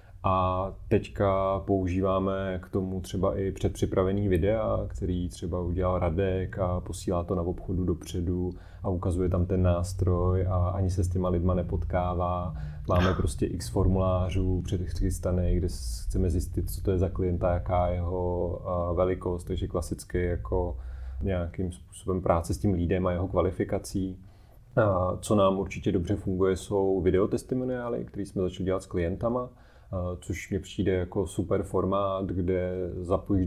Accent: native